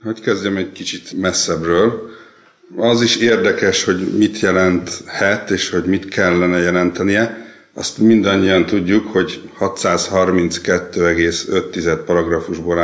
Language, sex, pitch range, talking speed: Hungarian, male, 90-110 Hz, 105 wpm